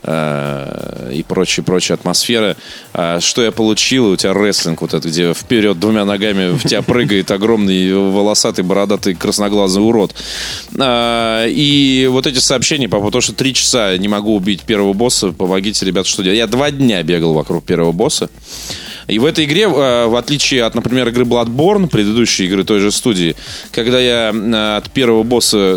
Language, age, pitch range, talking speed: Russian, 20-39, 100-130 Hz, 155 wpm